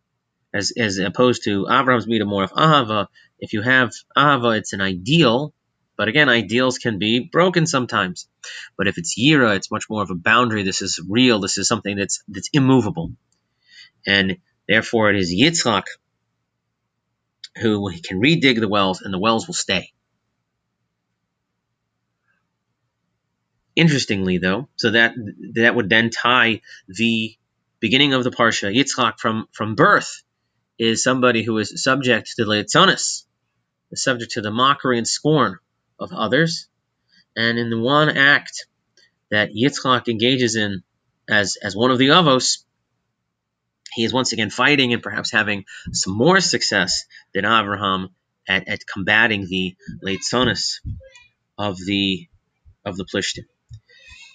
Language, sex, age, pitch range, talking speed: English, male, 30-49, 95-125 Hz, 140 wpm